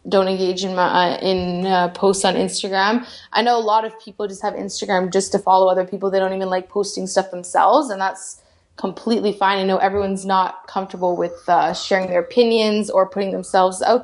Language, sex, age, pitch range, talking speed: English, female, 20-39, 190-225 Hz, 210 wpm